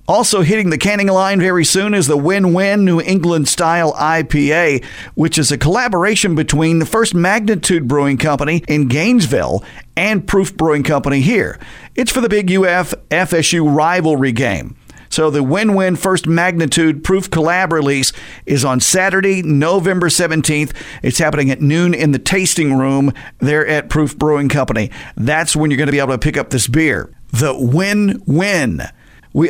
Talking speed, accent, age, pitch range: 160 wpm, American, 50-69, 145-185 Hz